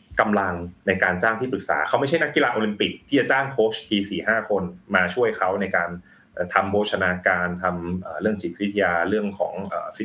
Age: 20-39